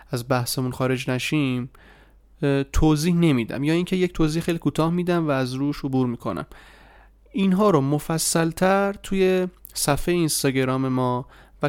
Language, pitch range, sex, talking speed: Persian, 130-160 Hz, male, 145 wpm